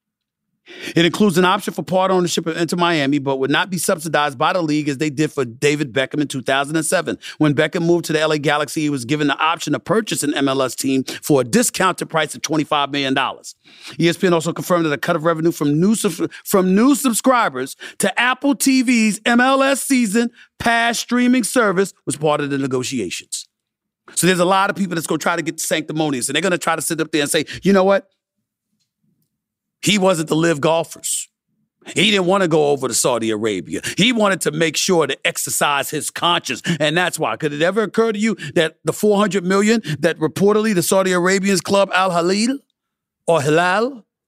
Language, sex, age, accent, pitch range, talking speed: English, male, 40-59, American, 155-205 Hz, 200 wpm